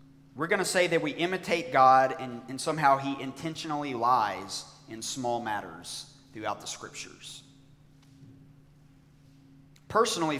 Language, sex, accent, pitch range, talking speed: English, male, American, 135-160 Hz, 120 wpm